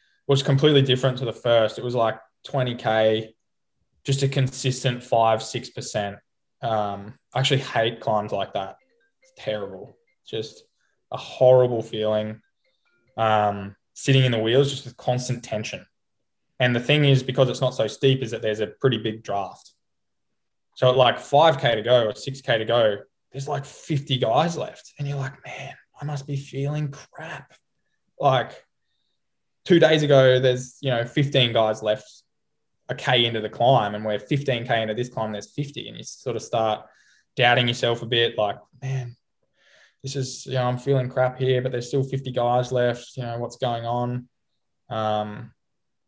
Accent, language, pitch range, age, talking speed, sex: Australian, English, 110-135 Hz, 10-29, 170 wpm, male